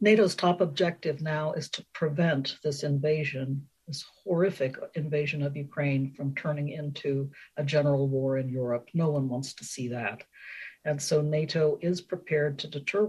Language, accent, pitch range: English, American, 140-170 Hz